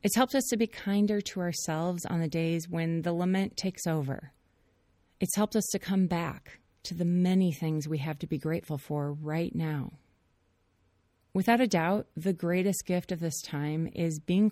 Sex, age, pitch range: female, 30-49, 145-190 Hz